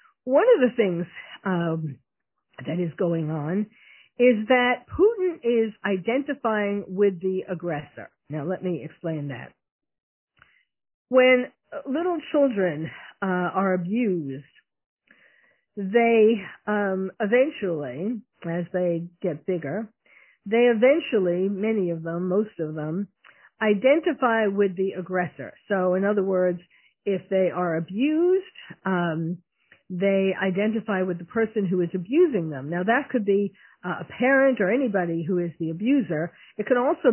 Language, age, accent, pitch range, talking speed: English, 50-69, American, 175-245 Hz, 130 wpm